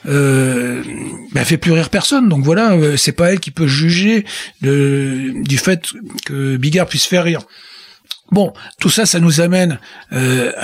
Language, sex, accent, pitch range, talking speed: French, male, French, 140-185 Hz, 165 wpm